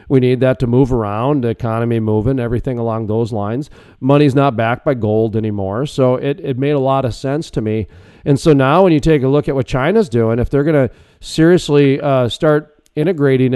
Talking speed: 210 wpm